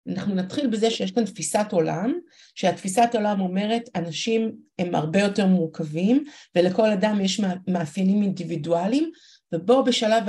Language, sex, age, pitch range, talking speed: Hebrew, female, 50-69, 180-245 Hz, 130 wpm